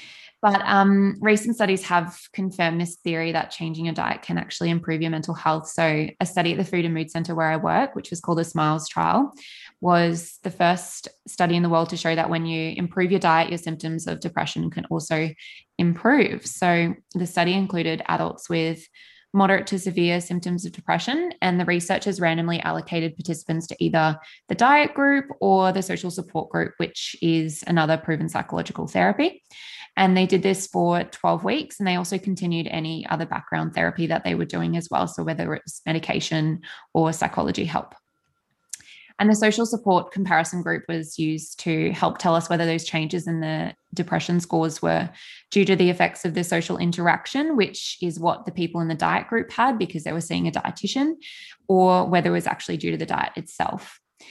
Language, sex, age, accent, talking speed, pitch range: English, female, 20-39, Australian, 195 wpm, 165-195 Hz